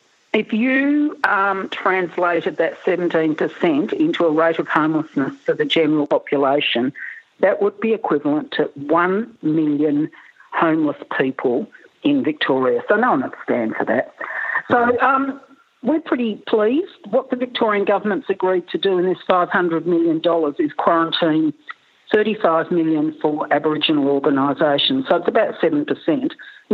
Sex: female